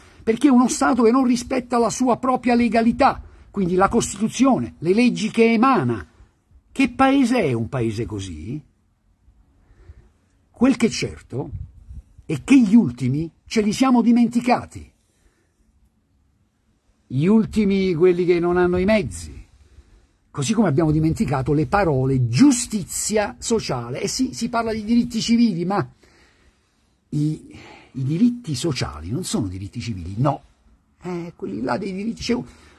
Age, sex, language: 60-79, male, Italian